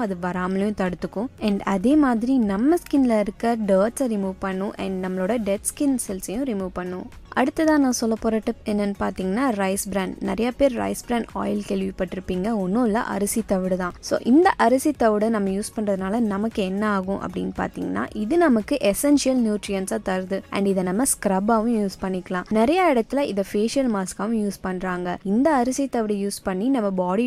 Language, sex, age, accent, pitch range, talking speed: Tamil, female, 20-39, native, 195-245 Hz, 140 wpm